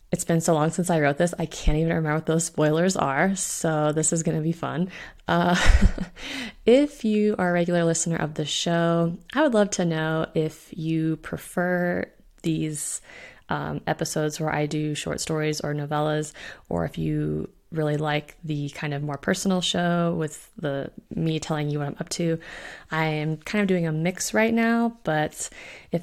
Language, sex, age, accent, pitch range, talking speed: English, female, 20-39, American, 155-190 Hz, 190 wpm